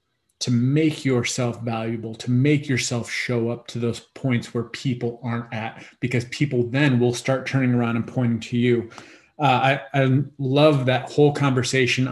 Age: 30-49